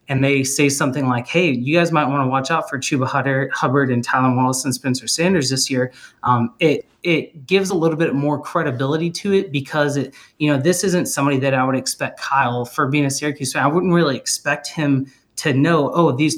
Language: English